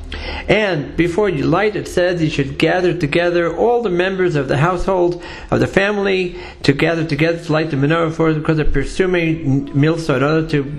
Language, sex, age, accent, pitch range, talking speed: English, male, 50-69, American, 150-185 Hz, 185 wpm